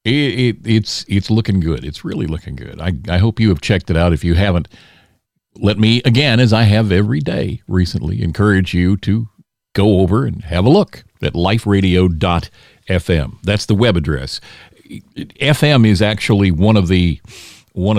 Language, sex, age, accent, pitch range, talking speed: English, male, 50-69, American, 90-115 Hz, 180 wpm